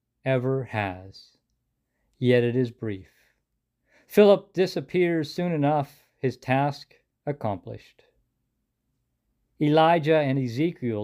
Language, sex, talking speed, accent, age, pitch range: English, male, 85 wpm, American, 50-69, 120-160 Hz